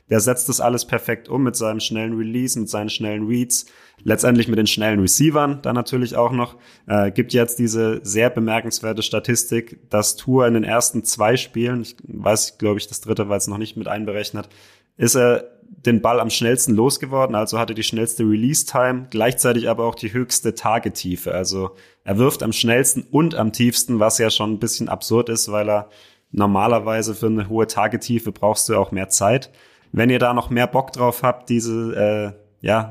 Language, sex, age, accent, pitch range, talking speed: German, male, 30-49, German, 105-120 Hz, 195 wpm